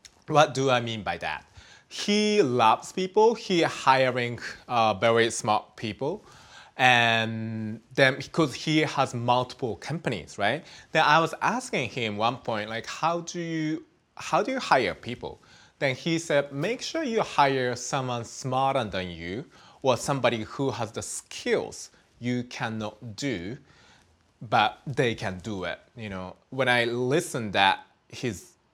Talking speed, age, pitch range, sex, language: 150 wpm, 20-39, 110-160 Hz, male, English